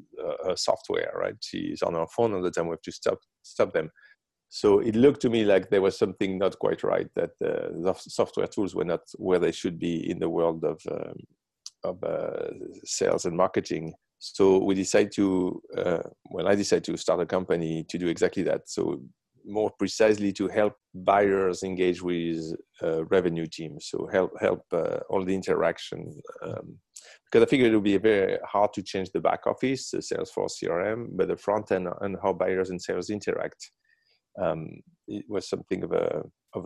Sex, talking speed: male, 190 wpm